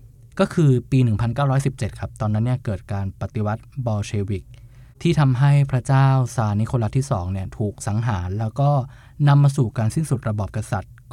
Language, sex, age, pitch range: Thai, male, 20-39, 110-130 Hz